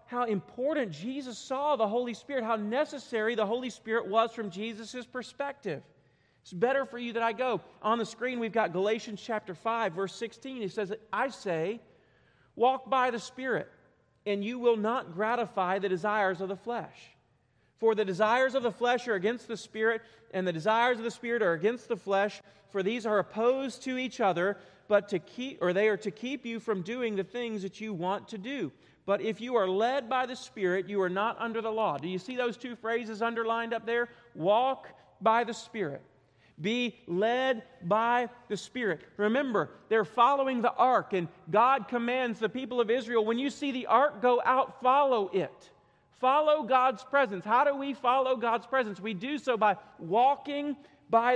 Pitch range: 205-250 Hz